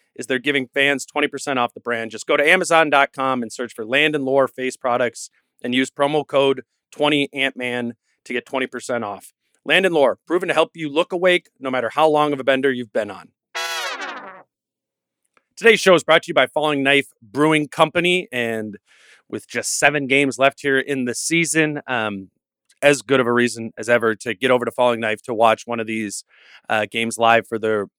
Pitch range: 110-140 Hz